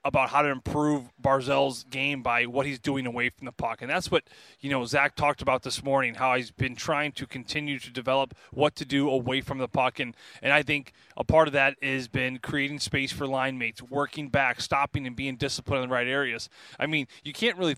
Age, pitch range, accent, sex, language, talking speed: 30-49, 130-150 Hz, American, male, English, 235 wpm